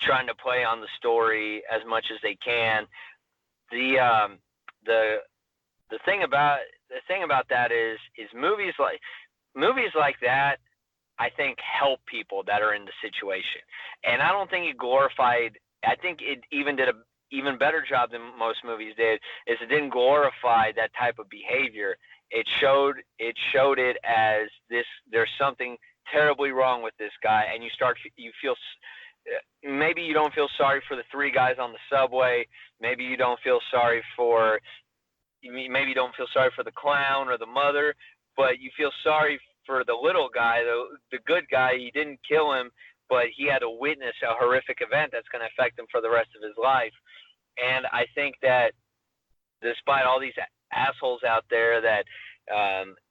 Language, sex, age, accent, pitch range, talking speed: English, male, 30-49, American, 115-155 Hz, 180 wpm